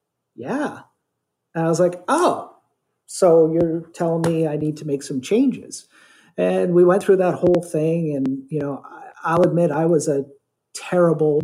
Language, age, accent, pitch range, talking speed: English, 40-59, American, 135-160 Hz, 175 wpm